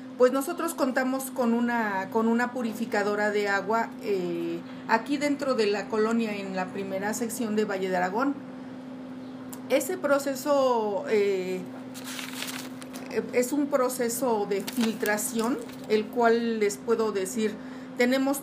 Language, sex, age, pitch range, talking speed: Spanish, female, 40-59, 220-260 Hz, 125 wpm